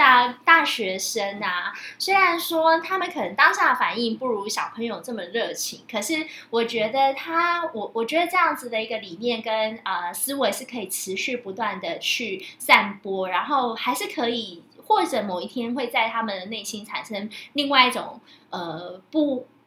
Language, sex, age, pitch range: Chinese, female, 20-39, 195-285 Hz